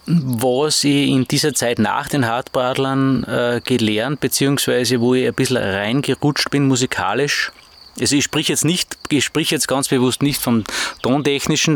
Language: German